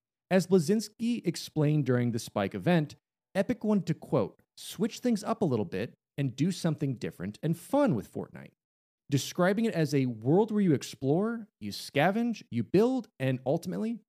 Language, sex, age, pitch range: English, male, 30-49, 125-205 Hz